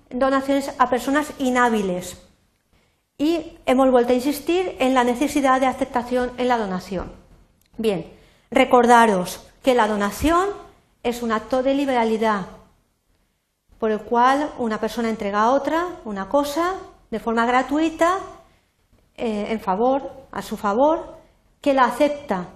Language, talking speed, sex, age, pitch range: Spanish, 130 wpm, female, 50-69, 220-275 Hz